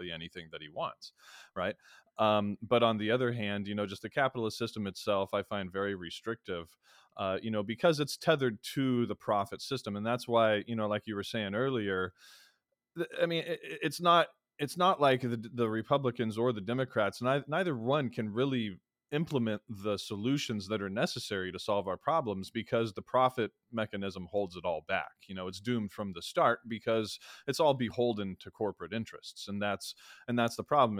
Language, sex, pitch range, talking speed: English, male, 100-120 Hz, 190 wpm